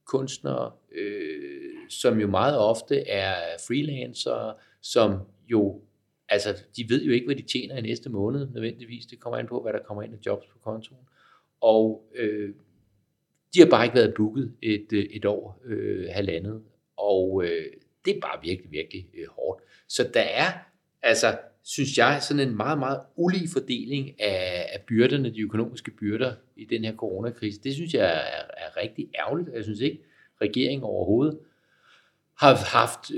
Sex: male